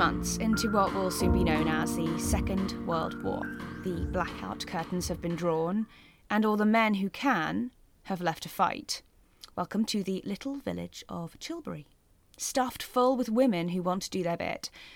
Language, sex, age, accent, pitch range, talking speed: English, female, 20-39, British, 165-215 Hz, 180 wpm